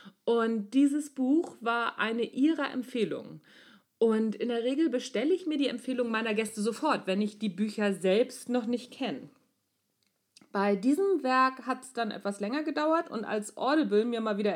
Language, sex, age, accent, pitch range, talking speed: German, female, 50-69, German, 220-275 Hz, 175 wpm